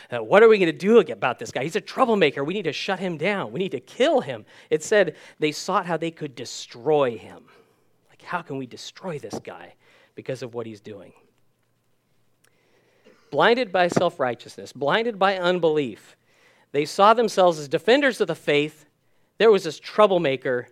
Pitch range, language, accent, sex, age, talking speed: 145-190 Hz, English, American, male, 40-59, 180 wpm